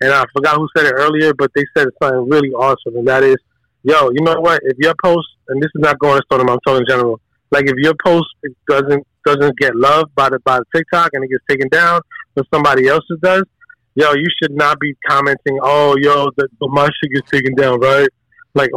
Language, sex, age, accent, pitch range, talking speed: English, male, 20-39, American, 135-155 Hz, 230 wpm